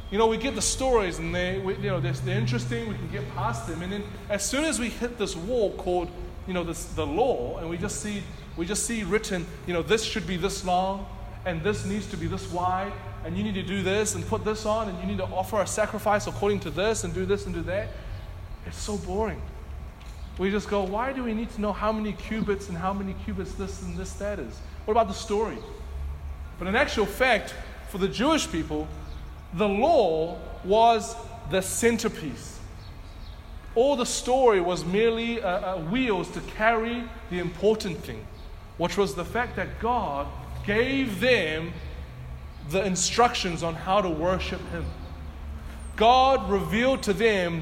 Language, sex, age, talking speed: English, male, 20-39, 195 wpm